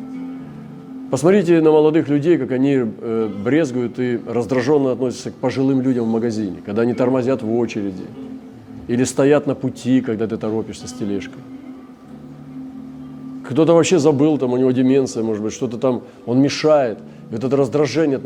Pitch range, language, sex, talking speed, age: 120-155 Hz, Russian, male, 145 wpm, 40-59